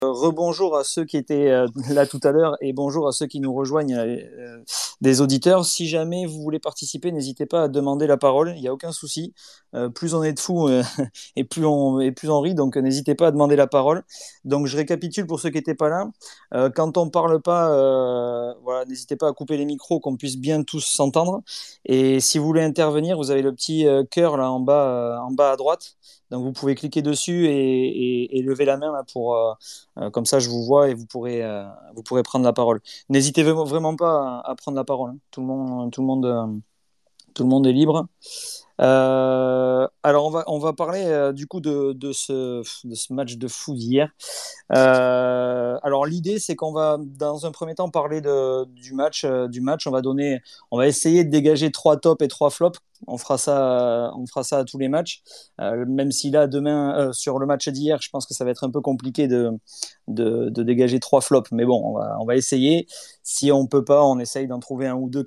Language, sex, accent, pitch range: French, male, French, 130-155 Hz